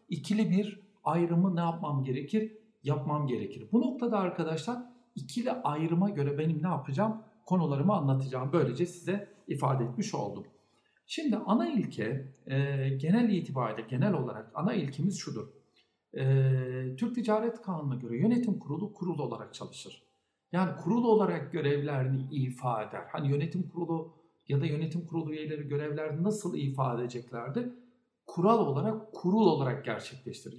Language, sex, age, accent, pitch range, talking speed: Turkish, male, 60-79, native, 140-210 Hz, 135 wpm